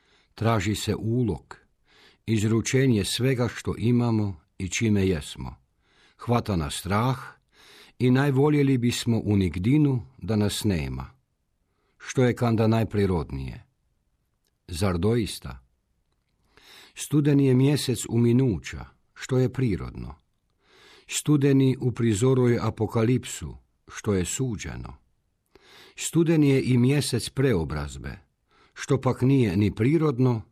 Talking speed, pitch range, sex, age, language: 100 wpm, 95-130 Hz, male, 50-69, Croatian